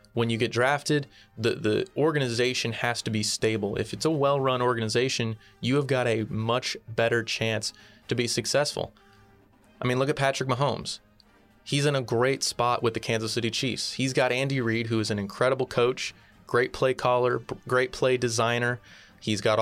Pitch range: 110-125 Hz